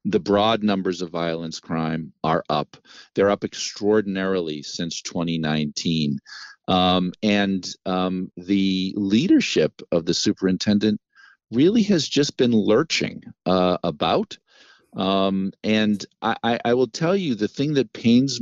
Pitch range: 90-110 Hz